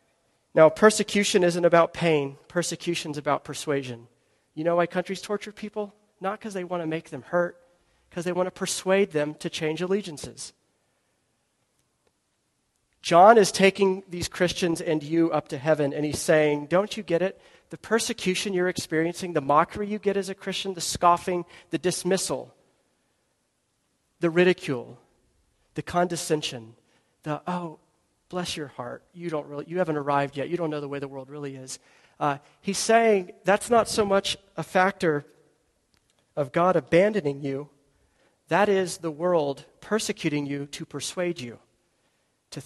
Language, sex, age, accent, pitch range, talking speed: English, male, 40-59, American, 145-185 Hz, 155 wpm